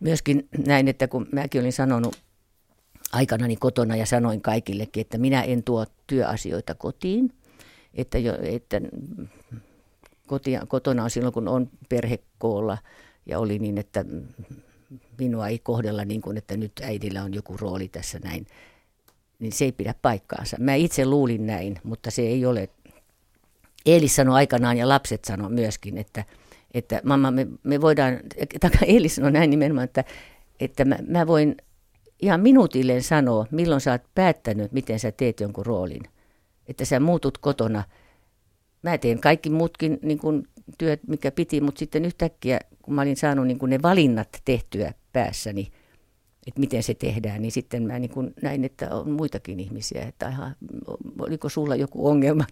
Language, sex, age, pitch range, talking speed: Finnish, female, 50-69, 110-140 Hz, 150 wpm